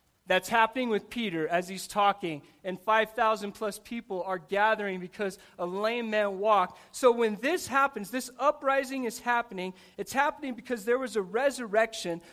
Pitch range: 205-265 Hz